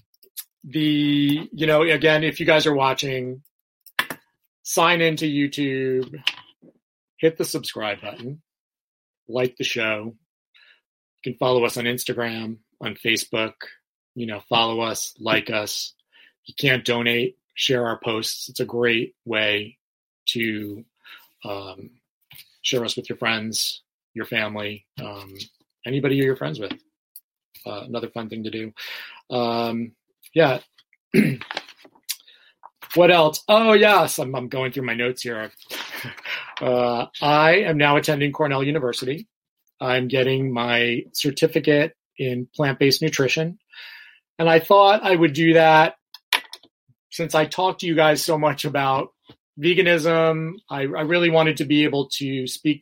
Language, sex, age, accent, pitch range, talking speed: English, male, 30-49, American, 120-155 Hz, 130 wpm